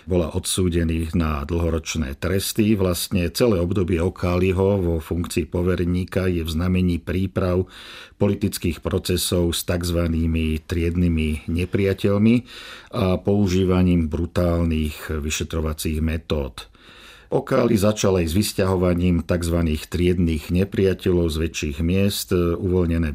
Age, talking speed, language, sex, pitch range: 50-69, 100 wpm, Czech, male, 85-95 Hz